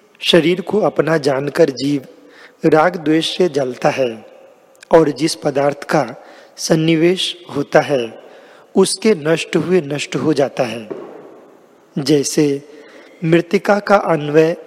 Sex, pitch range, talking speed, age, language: male, 150-175 Hz, 115 wpm, 40-59, Hindi